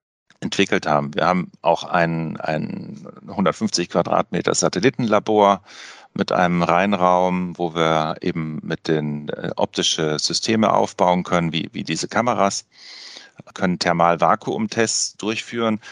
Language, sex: German, male